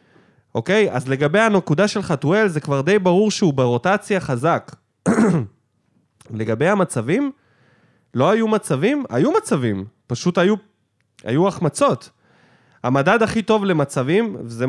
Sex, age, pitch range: male, 20-39, 135-200 Hz